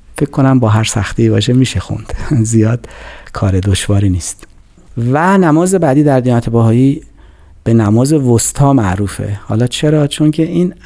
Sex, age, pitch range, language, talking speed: male, 40-59, 100-145 Hz, Persian, 145 wpm